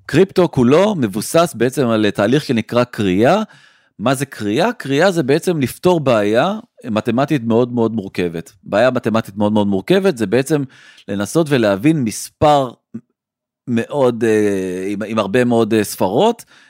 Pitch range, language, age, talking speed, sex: 110-155 Hz, Hebrew, 40-59, 125 wpm, male